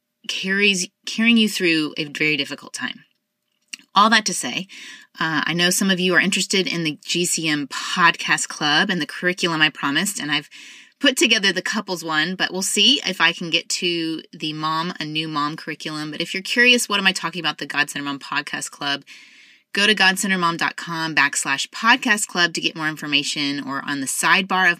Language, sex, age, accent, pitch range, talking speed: English, female, 20-39, American, 155-205 Hz, 195 wpm